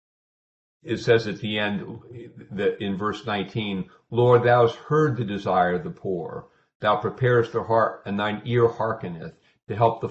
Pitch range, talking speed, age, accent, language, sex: 95-115 Hz, 170 wpm, 50-69, American, English, male